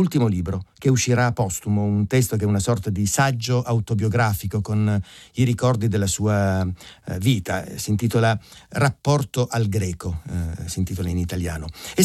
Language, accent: Italian, native